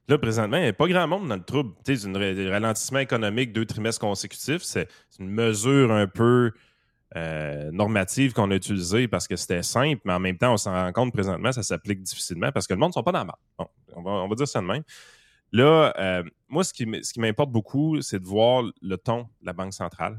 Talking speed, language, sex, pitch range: 230 wpm, French, male, 95-125 Hz